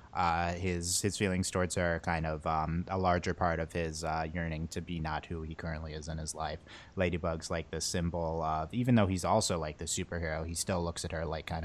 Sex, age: male, 30-49